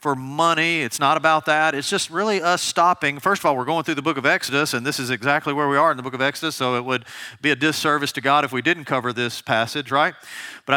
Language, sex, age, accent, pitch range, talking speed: English, male, 40-59, American, 140-190 Hz, 265 wpm